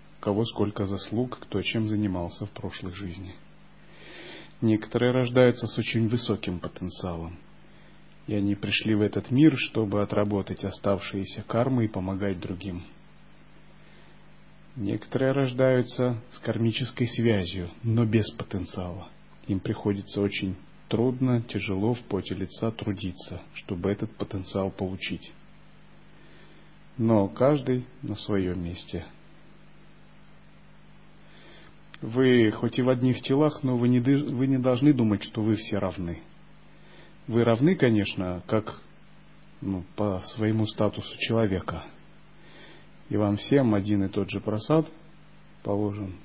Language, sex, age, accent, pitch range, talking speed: Russian, male, 30-49, native, 100-125 Hz, 115 wpm